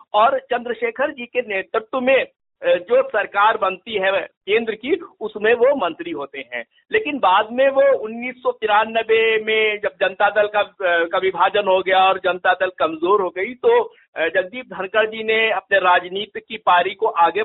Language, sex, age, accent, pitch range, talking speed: Hindi, male, 50-69, native, 195-255 Hz, 160 wpm